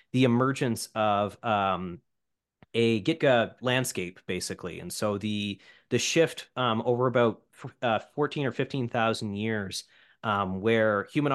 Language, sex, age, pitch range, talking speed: English, male, 30-49, 110-135 Hz, 130 wpm